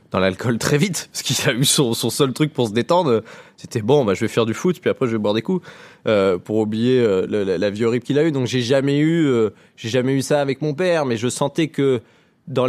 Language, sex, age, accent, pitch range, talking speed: French, male, 20-39, French, 120-150 Hz, 275 wpm